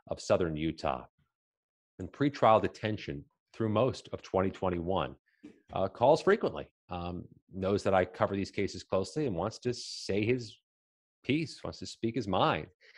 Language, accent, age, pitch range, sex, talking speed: English, American, 30-49, 90-130 Hz, male, 155 wpm